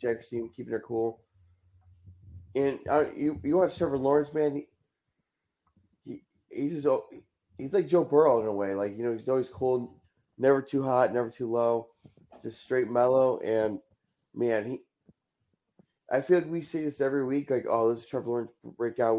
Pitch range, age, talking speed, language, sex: 115-130 Hz, 30-49, 180 wpm, English, male